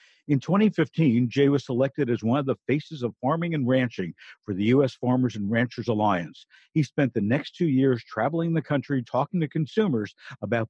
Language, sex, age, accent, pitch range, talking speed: English, male, 60-79, American, 120-160 Hz, 190 wpm